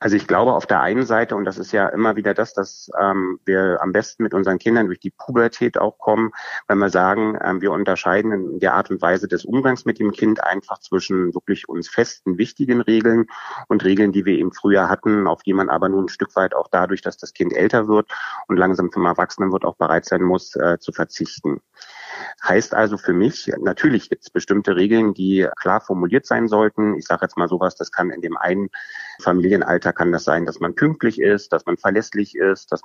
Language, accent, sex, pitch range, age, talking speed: German, German, male, 95-110 Hz, 30-49, 220 wpm